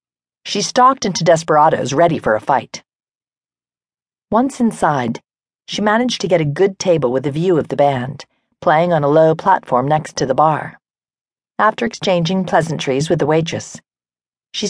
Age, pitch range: 40-59, 130-180 Hz